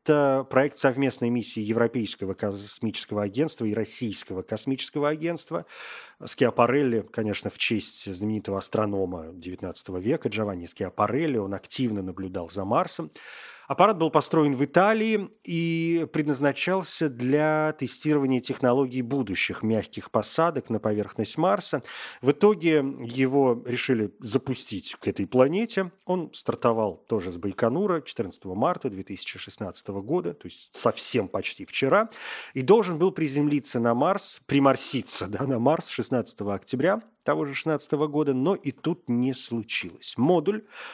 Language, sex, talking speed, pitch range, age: Russian, male, 125 wpm, 115-155 Hz, 30-49